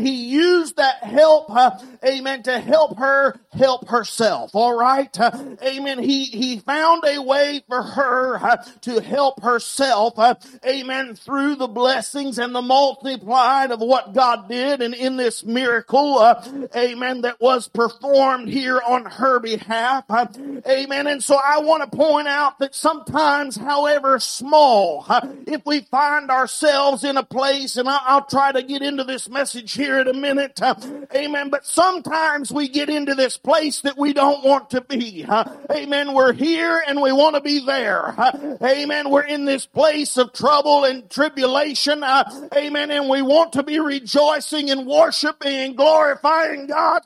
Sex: male